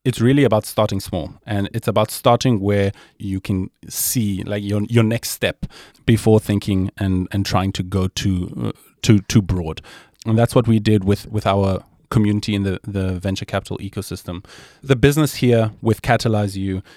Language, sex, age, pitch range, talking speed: English, male, 30-49, 100-120 Hz, 180 wpm